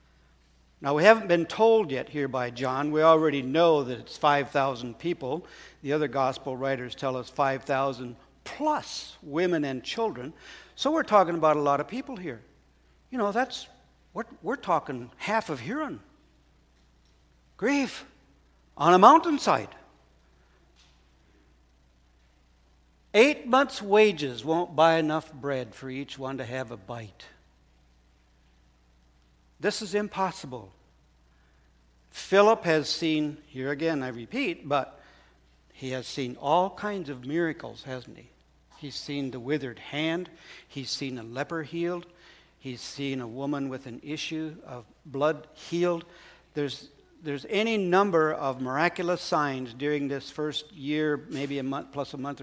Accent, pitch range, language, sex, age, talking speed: American, 120-165 Hz, English, male, 60-79, 135 wpm